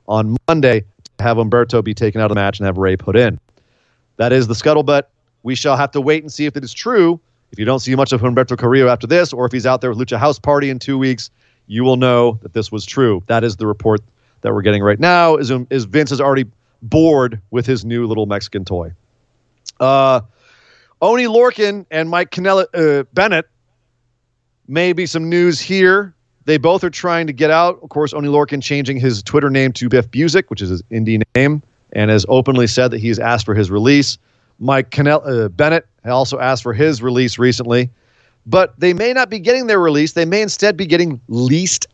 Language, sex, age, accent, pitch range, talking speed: English, male, 30-49, American, 120-155 Hz, 215 wpm